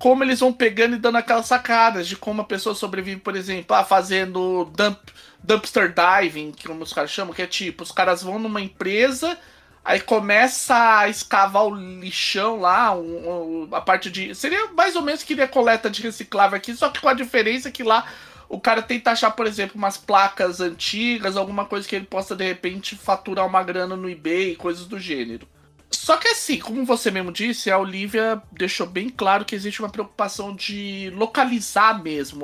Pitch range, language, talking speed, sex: 185-235 Hz, Portuguese, 190 wpm, male